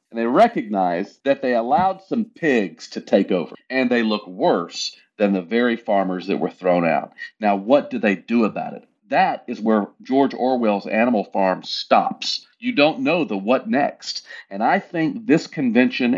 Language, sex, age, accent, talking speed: English, male, 40-59, American, 180 wpm